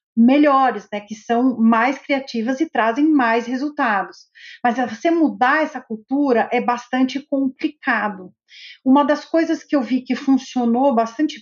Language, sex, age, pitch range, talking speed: Portuguese, female, 40-59, 230-285 Hz, 140 wpm